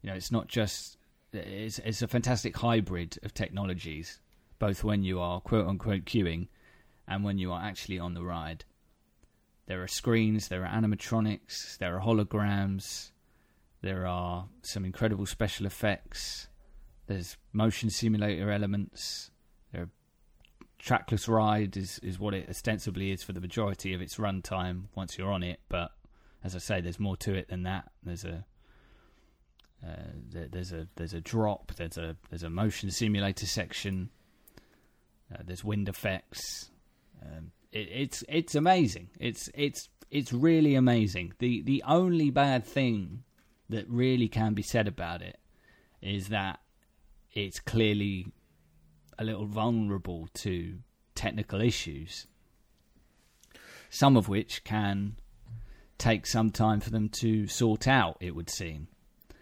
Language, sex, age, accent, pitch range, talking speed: English, male, 20-39, British, 90-110 Hz, 140 wpm